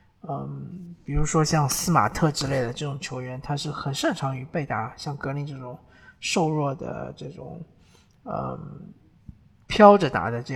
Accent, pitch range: native, 140-175 Hz